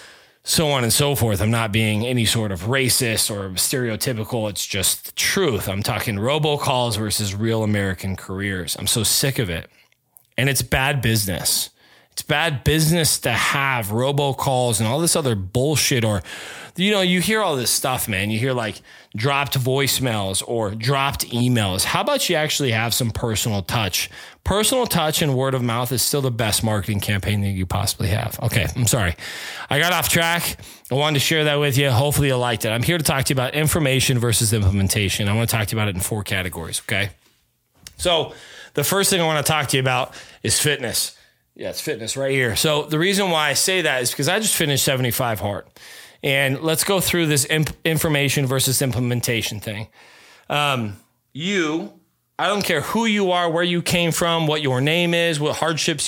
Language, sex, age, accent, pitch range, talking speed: English, male, 20-39, American, 110-150 Hz, 200 wpm